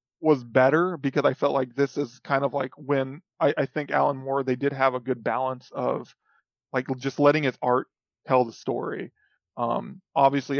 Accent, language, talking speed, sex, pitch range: American, English, 195 wpm, male, 125-145 Hz